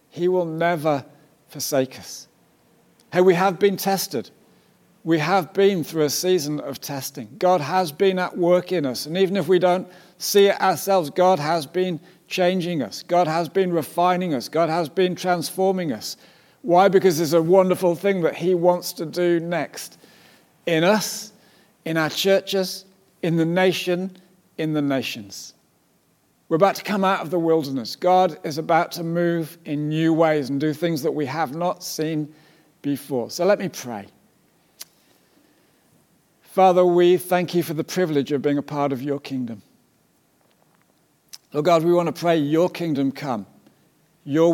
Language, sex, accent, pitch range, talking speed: English, male, British, 150-185 Hz, 165 wpm